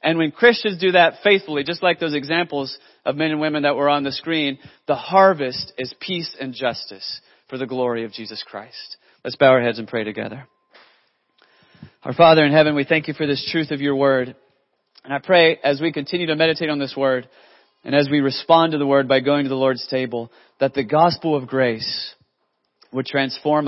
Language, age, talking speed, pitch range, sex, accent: English, 30-49, 210 wpm, 130-155 Hz, male, American